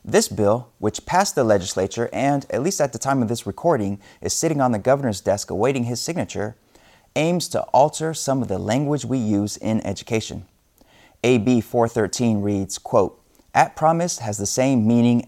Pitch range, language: 100-135 Hz, English